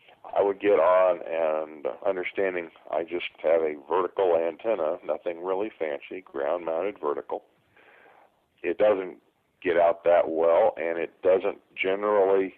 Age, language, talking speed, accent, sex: 50-69, English, 130 wpm, American, male